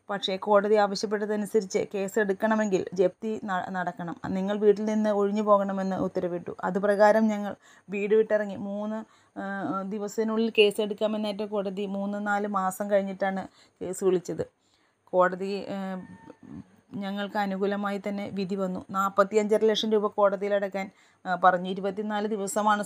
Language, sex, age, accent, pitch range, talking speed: Malayalam, female, 20-39, native, 195-210 Hz, 110 wpm